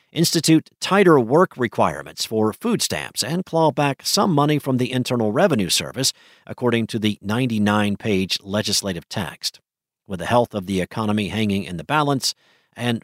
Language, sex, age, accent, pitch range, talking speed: English, male, 50-69, American, 110-145 Hz, 155 wpm